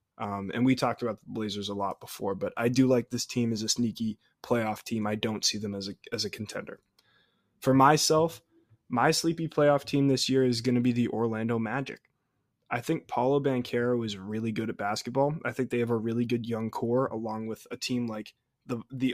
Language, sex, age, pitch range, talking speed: English, male, 20-39, 115-130 Hz, 220 wpm